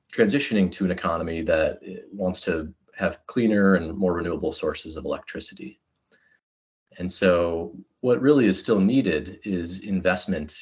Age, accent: 30-49, American